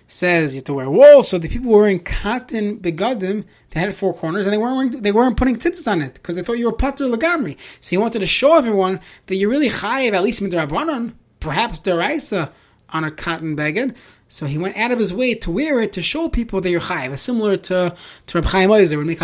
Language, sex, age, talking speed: English, male, 20-39, 240 wpm